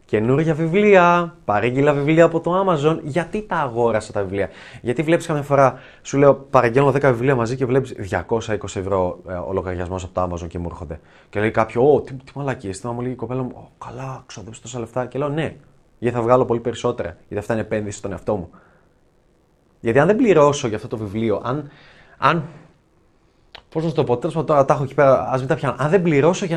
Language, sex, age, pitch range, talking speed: Greek, male, 20-39, 105-160 Hz, 195 wpm